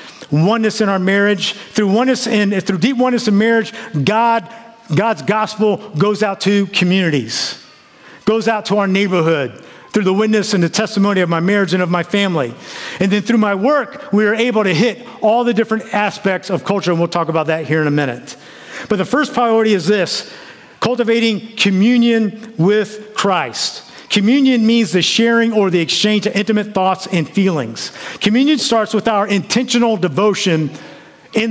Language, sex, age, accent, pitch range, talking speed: English, male, 50-69, American, 190-225 Hz, 175 wpm